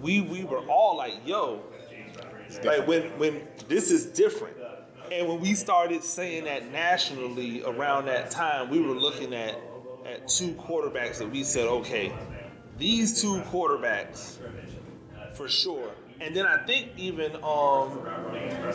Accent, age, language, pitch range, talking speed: American, 30-49, English, 130-195 Hz, 140 wpm